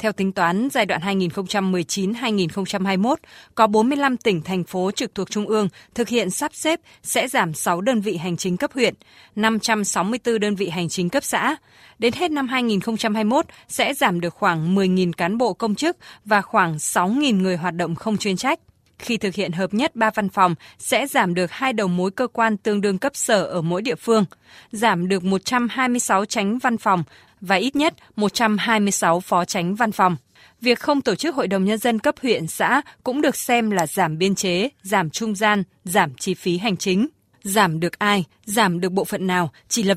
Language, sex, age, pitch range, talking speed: Vietnamese, female, 20-39, 185-230 Hz, 195 wpm